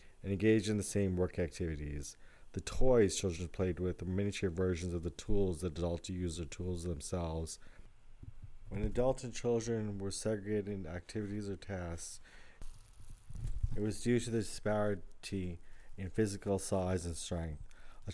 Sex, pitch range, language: male, 90-110 Hz, English